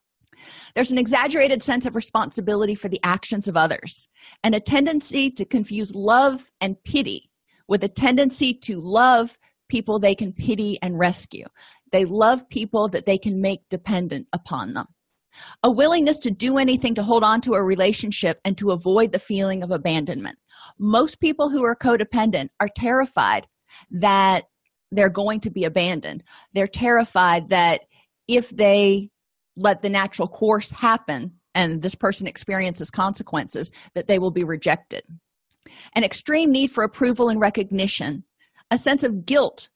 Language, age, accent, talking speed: English, 40-59, American, 155 wpm